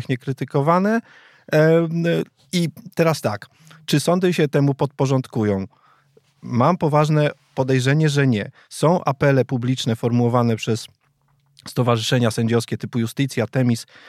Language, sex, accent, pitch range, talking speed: Polish, male, native, 125-150 Hz, 100 wpm